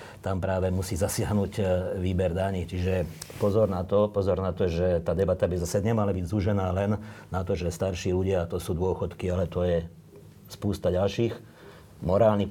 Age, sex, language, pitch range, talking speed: 50-69, male, Slovak, 90-105 Hz, 175 wpm